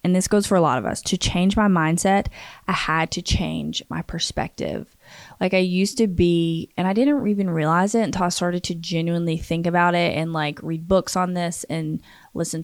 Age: 20-39